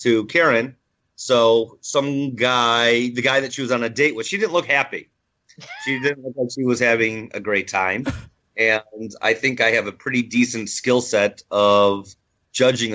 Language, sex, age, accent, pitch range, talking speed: English, male, 30-49, American, 110-125 Hz, 185 wpm